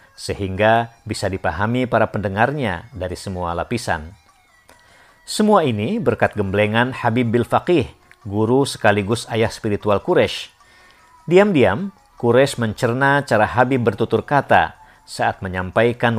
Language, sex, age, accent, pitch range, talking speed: Indonesian, male, 50-69, native, 100-125 Hz, 105 wpm